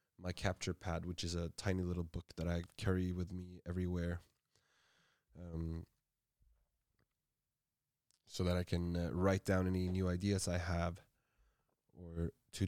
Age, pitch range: 20-39, 85-95 Hz